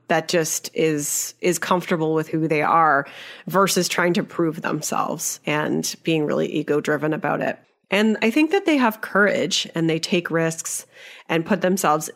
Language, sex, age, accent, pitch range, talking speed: English, female, 30-49, American, 155-210 Hz, 170 wpm